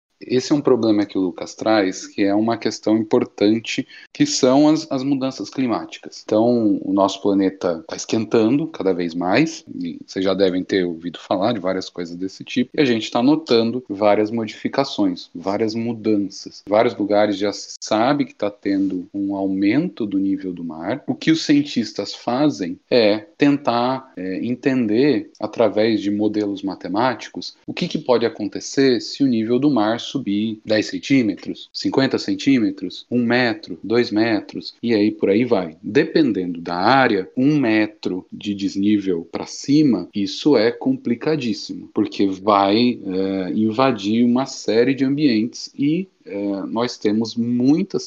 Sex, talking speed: male, 155 wpm